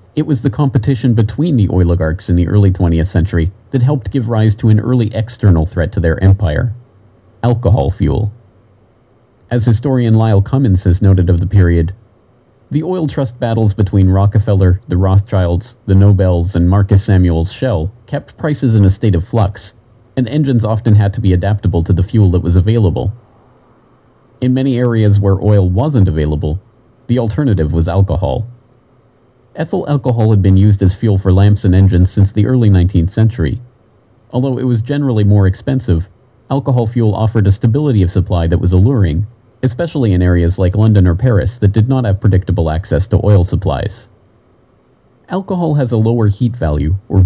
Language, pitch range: English, 95-120 Hz